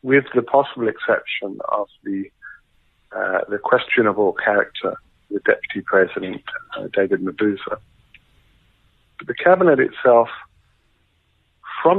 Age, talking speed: 50-69, 110 wpm